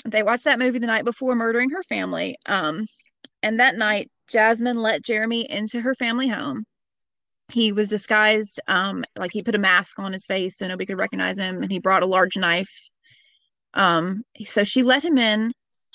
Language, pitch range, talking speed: English, 190-230 Hz, 190 wpm